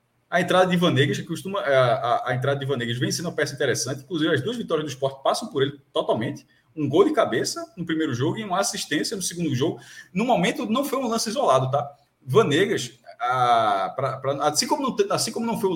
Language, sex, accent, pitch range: Portuguese, male, Brazilian, 140-185 Hz